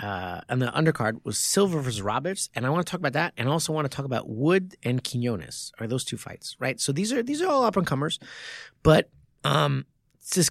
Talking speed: 240 wpm